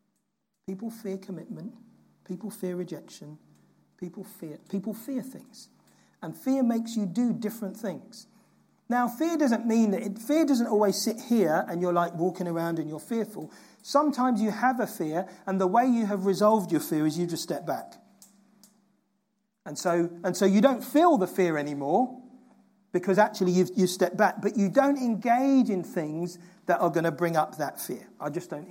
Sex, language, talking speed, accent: male, English, 185 wpm, British